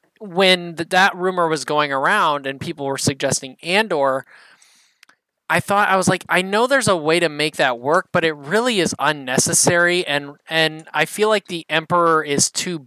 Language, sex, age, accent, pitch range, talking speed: English, male, 20-39, American, 140-175 Hz, 180 wpm